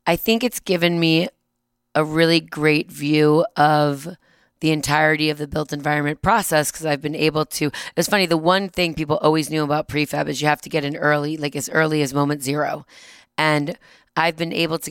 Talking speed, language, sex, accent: 200 wpm, English, female, American